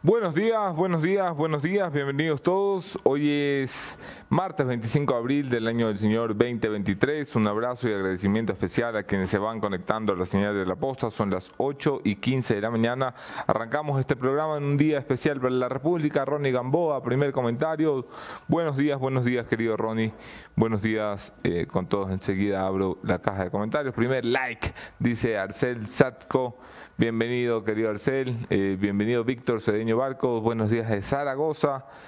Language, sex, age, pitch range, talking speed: English, male, 30-49, 105-145 Hz, 170 wpm